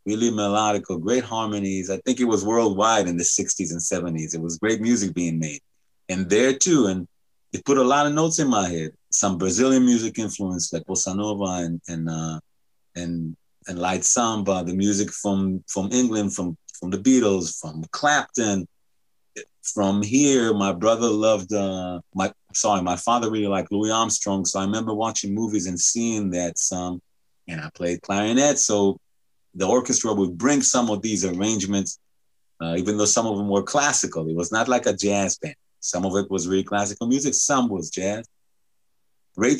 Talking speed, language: 180 wpm, English